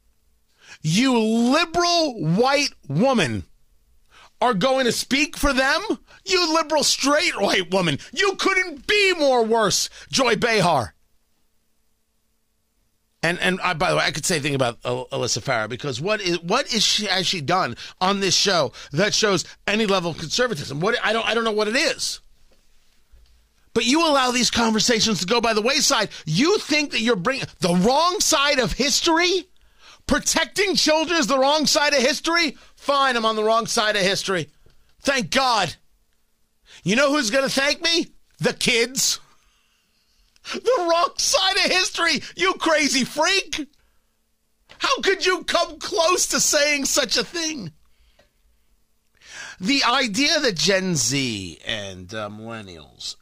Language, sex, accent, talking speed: English, male, American, 155 wpm